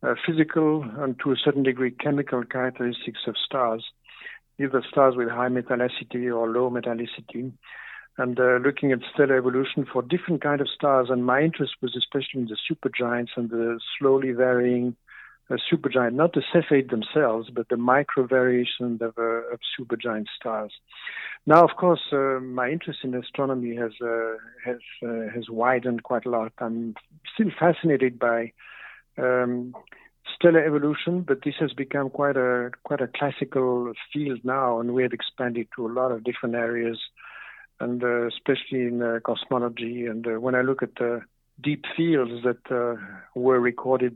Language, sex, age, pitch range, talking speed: English, male, 60-79, 120-135 Hz, 165 wpm